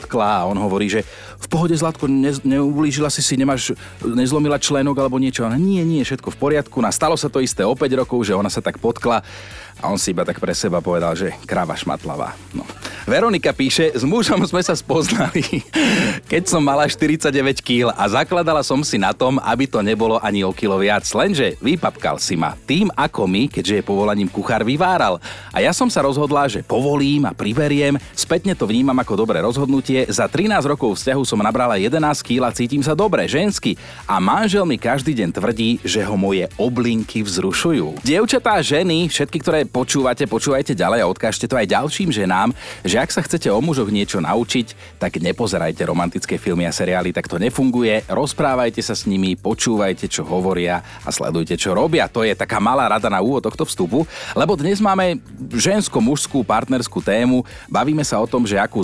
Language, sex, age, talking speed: Slovak, male, 40-59, 190 wpm